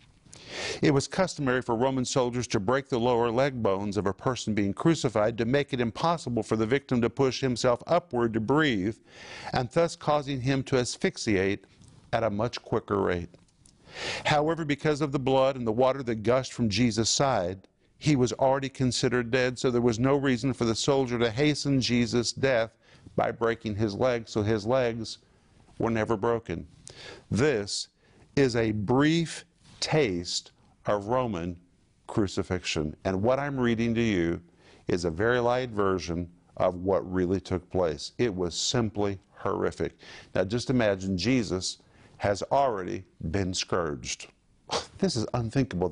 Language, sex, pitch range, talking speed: English, male, 100-130 Hz, 155 wpm